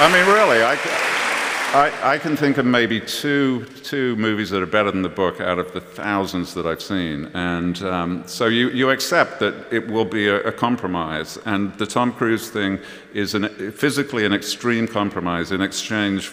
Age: 50-69